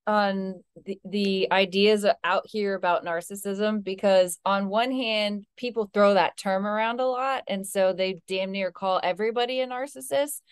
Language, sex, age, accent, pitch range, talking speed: English, female, 20-39, American, 180-220 Hz, 160 wpm